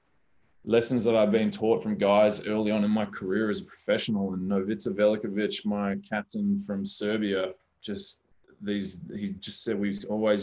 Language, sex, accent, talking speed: English, male, Australian, 165 wpm